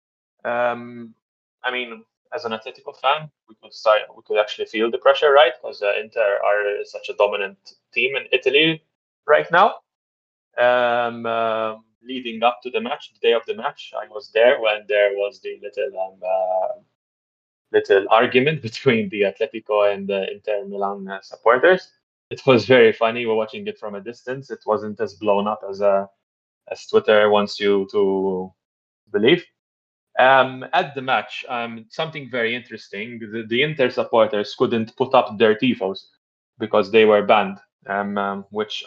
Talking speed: 170 wpm